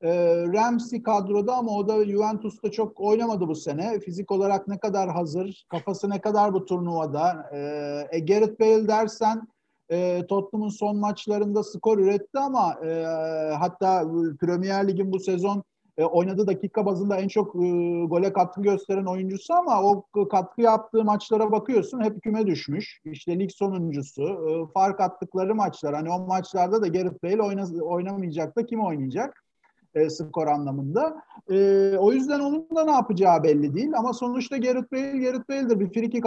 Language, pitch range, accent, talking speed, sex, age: Turkish, 175-225 Hz, native, 160 wpm, male, 50-69